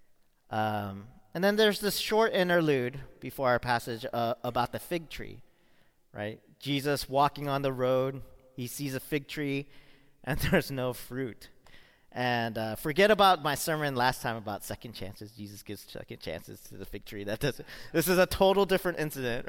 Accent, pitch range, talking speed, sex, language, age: American, 120-175 Hz, 180 wpm, male, English, 40-59